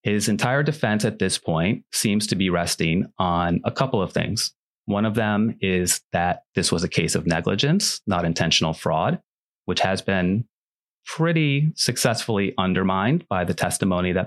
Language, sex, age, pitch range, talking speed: English, male, 30-49, 95-125 Hz, 165 wpm